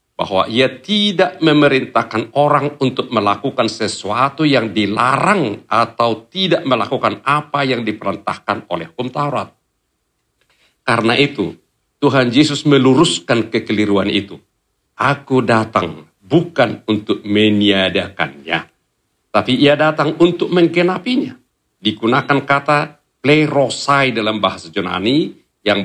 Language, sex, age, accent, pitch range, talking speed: Indonesian, male, 50-69, native, 110-150 Hz, 100 wpm